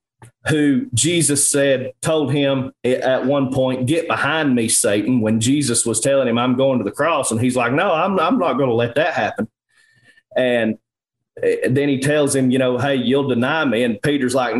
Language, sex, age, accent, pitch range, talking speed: English, male, 30-49, American, 125-165 Hz, 195 wpm